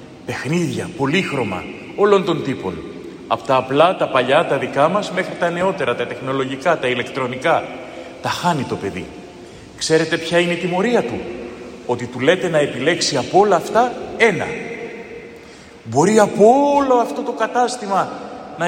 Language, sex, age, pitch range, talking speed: Greek, male, 30-49, 155-195 Hz, 150 wpm